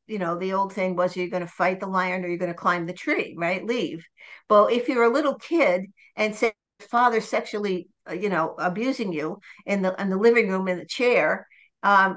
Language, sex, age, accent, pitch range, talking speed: English, female, 60-79, American, 185-215 Hz, 225 wpm